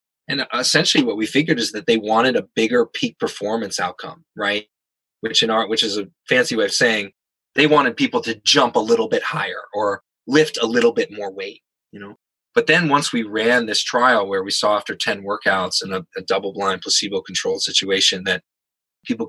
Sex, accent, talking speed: male, American, 200 wpm